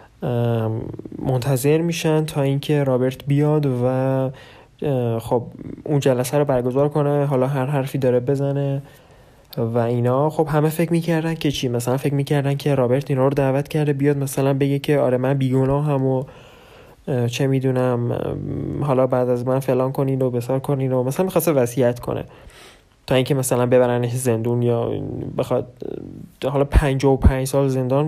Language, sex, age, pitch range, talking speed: Persian, male, 20-39, 130-145 Hz, 155 wpm